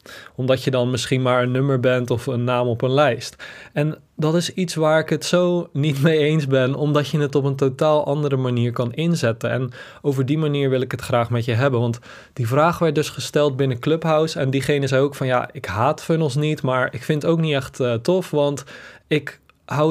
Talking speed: 230 wpm